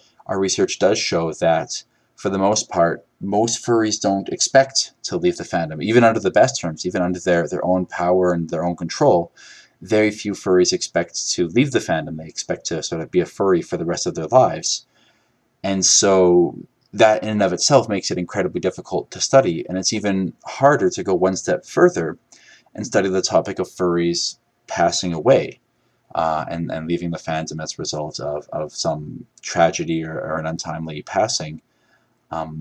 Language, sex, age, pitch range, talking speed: English, male, 30-49, 85-100 Hz, 190 wpm